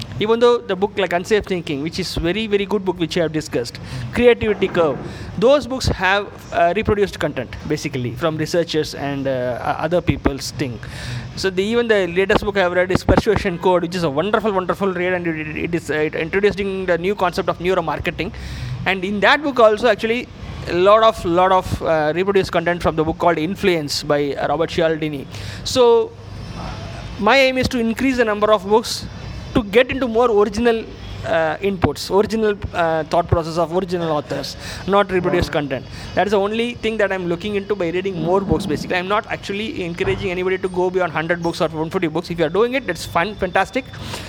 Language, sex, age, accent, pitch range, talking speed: Tamil, male, 20-39, native, 160-210 Hz, 205 wpm